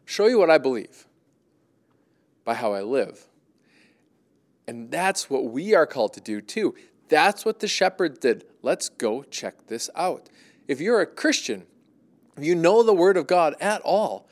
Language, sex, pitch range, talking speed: English, male, 175-255 Hz, 170 wpm